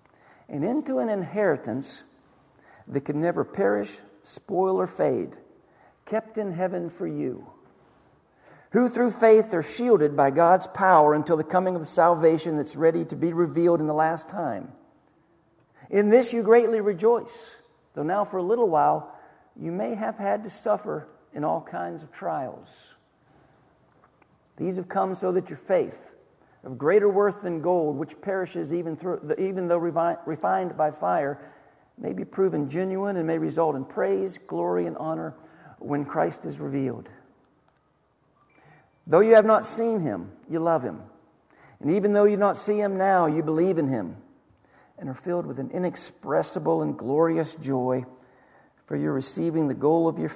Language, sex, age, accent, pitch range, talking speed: English, male, 50-69, American, 150-190 Hz, 165 wpm